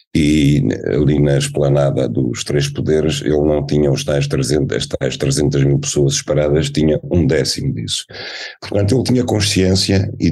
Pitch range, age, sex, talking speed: 80-95 Hz, 50-69, male, 165 wpm